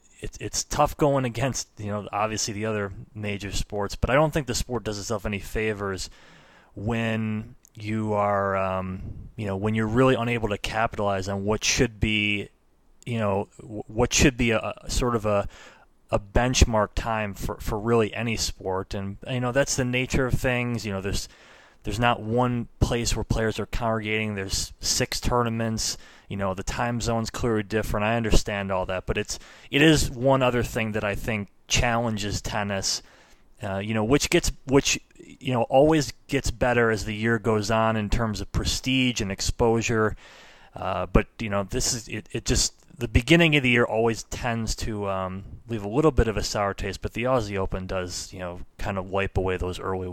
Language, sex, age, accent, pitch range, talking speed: English, male, 20-39, American, 100-120 Hz, 195 wpm